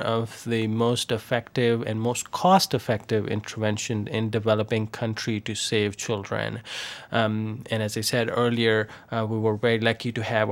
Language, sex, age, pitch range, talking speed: English, male, 20-39, 110-125 Hz, 155 wpm